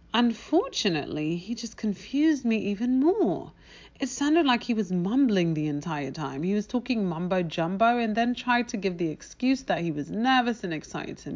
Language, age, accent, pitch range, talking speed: English, 40-59, British, 190-270 Hz, 180 wpm